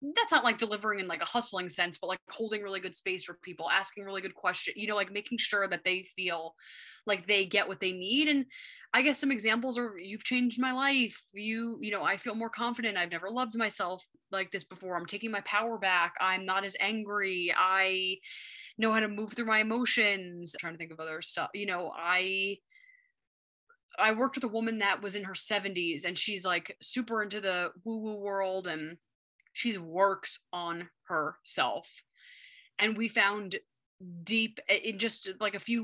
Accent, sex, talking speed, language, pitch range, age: American, female, 200 wpm, English, 185-230 Hz, 20-39